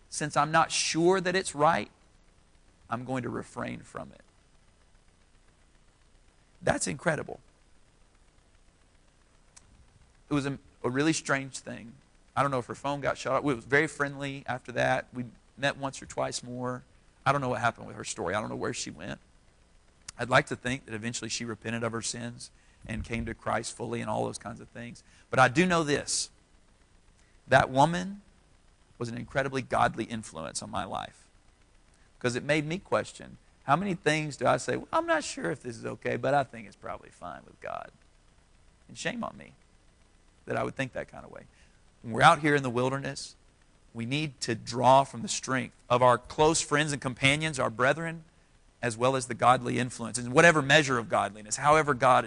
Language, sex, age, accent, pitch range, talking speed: English, male, 40-59, American, 110-140 Hz, 190 wpm